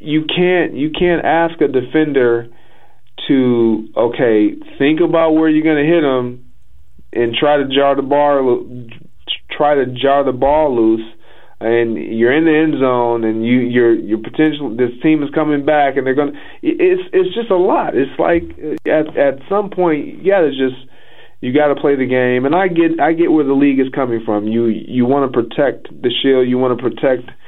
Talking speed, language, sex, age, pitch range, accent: 190 wpm, English, male, 30-49, 120-150 Hz, American